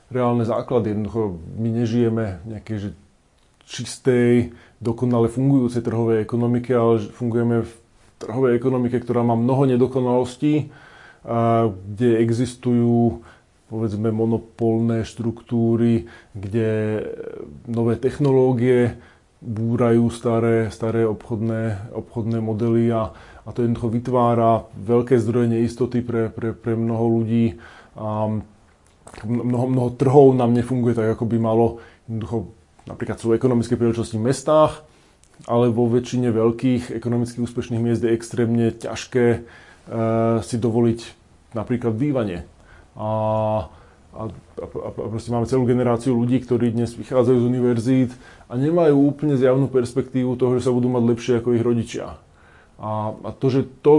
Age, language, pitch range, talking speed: 20-39, Slovak, 115-125 Hz, 125 wpm